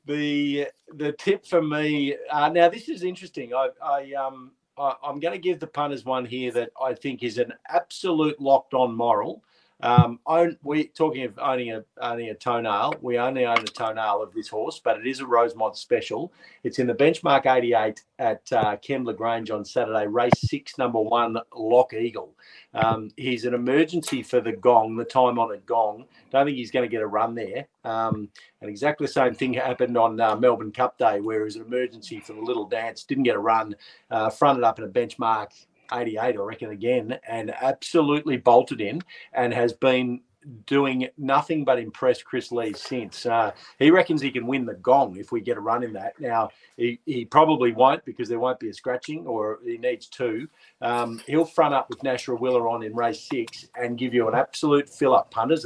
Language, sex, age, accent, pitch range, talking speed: English, male, 50-69, Australian, 115-150 Hz, 205 wpm